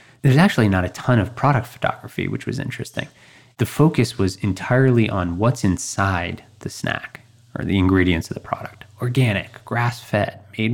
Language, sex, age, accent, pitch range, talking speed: English, male, 20-39, American, 95-125 Hz, 160 wpm